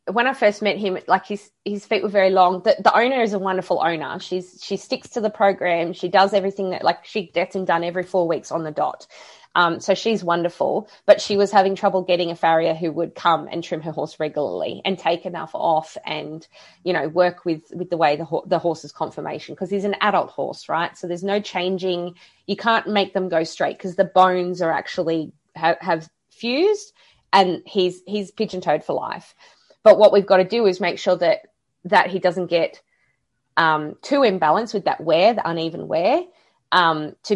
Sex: female